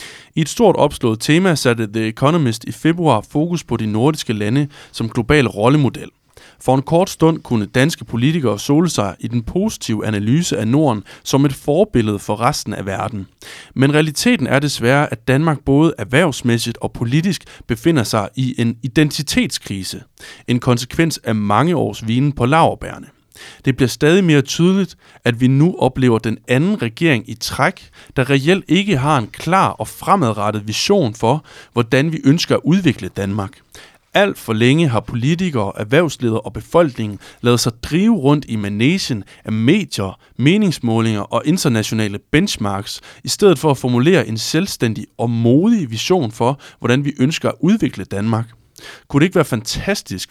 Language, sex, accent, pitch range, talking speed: Danish, male, native, 115-155 Hz, 160 wpm